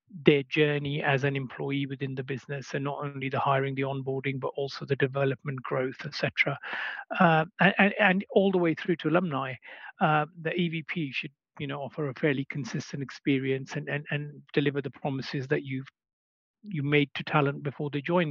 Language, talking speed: English, 185 wpm